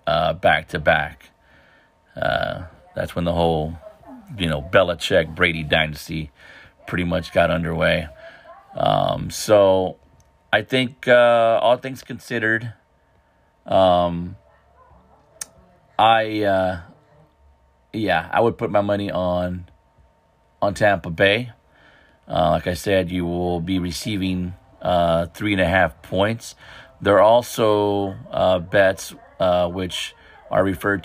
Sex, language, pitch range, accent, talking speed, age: male, English, 85-100 Hz, American, 120 wpm, 40-59